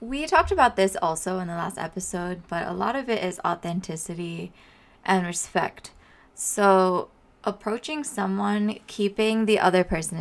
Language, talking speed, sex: English, 145 wpm, female